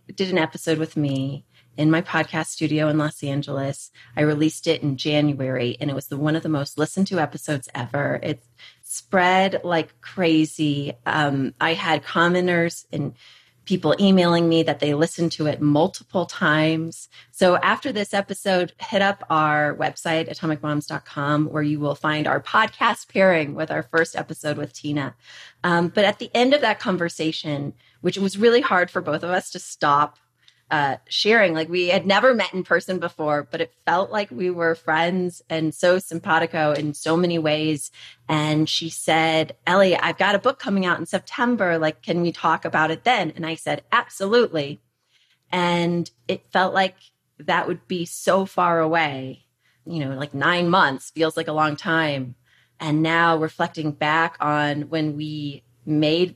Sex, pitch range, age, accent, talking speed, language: female, 150-180 Hz, 30-49, American, 175 wpm, English